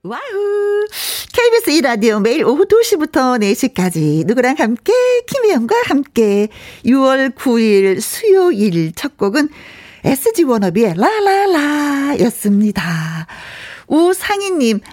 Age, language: 40-59, Korean